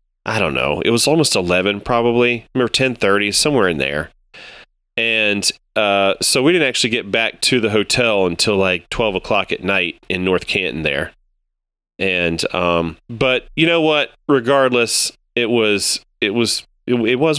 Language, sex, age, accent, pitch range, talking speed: English, male, 30-49, American, 95-135 Hz, 175 wpm